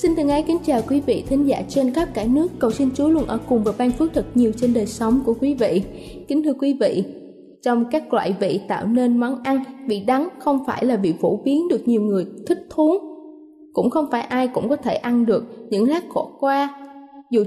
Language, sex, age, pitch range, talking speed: Vietnamese, female, 20-39, 230-290 Hz, 235 wpm